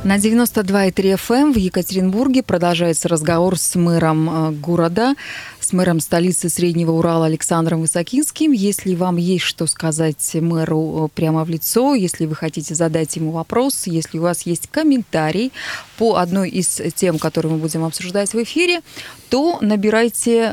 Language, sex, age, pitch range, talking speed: Russian, female, 20-39, 170-220 Hz, 145 wpm